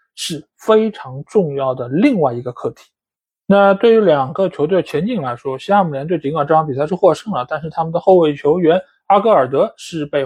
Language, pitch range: Chinese, 150-215 Hz